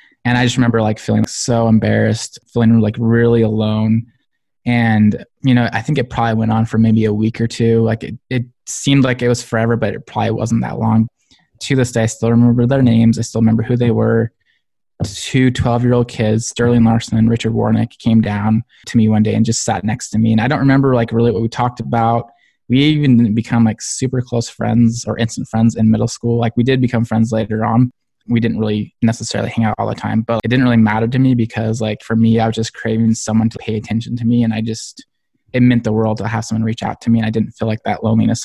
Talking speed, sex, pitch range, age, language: 245 wpm, male, 110-120 Hz, 20-39, English